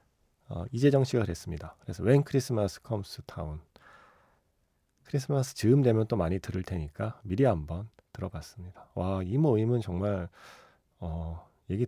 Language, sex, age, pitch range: Korean, male, 40-59, 85-135 Hz